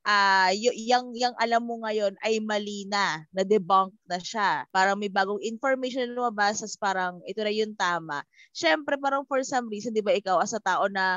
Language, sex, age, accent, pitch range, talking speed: Filipino, female, 20-39, native, 190-240 Hz, 205 wpm